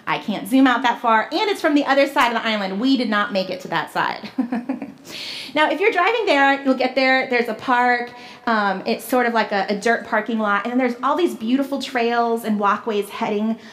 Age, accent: 30-49, American